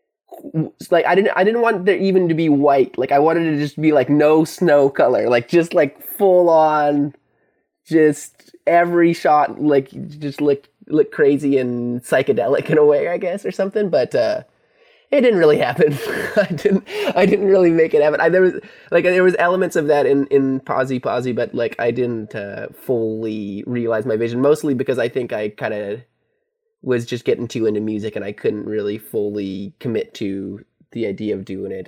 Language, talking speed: English, 200 wpm